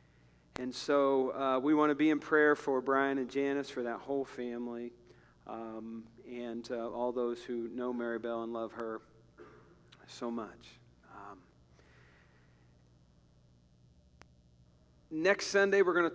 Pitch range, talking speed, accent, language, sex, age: 115-135 Hz, 140 wpm, American, English, male, 40-59